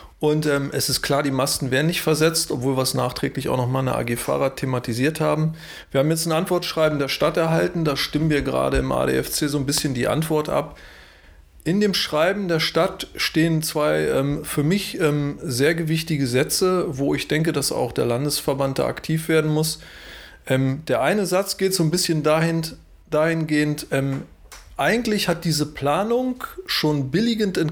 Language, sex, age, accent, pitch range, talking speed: German, male, 30-49, German, 135-165 Hz, 180 wpm